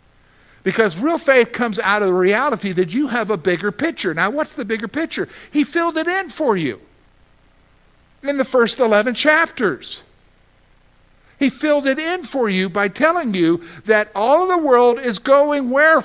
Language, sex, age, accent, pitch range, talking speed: English, male, 50-69, American, 195-285 Hz, 175 wpm